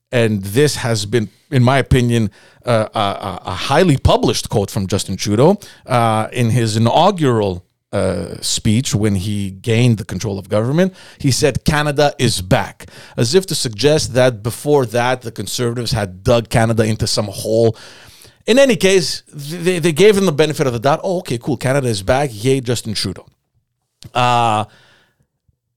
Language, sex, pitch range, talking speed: English, male, 110-140 Hz, 165 wpm